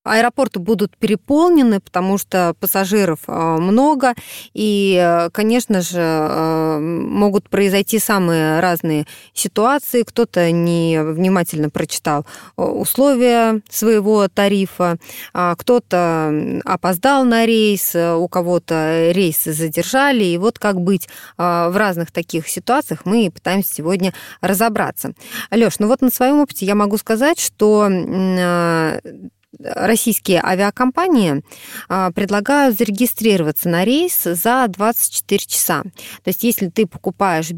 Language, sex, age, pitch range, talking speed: Russian, female, 20-39, 175-230 Hz, 105 wpm